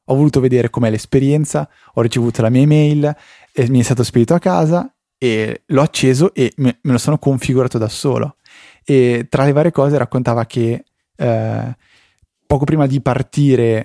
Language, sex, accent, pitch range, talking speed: Italian, male, native, 115-140 Hz, 165 wpm